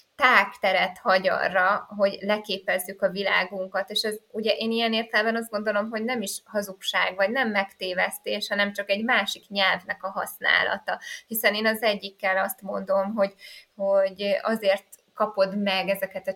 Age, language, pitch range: 20-39, Hungarian, 190-215 Hz